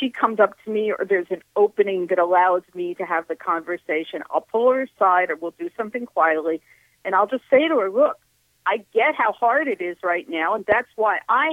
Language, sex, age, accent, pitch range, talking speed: English, female, 50-69, American, 185-260 Hz, 230 wpm